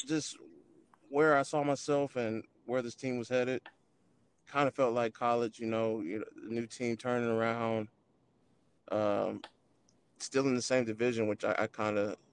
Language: English